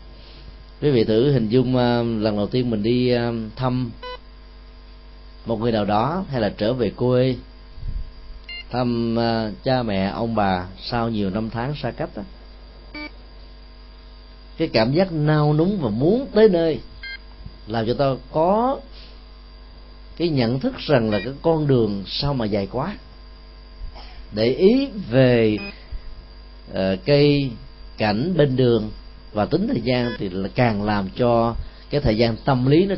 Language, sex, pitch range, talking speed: Vietnamese, male, 95-130 Hz, 150 wpm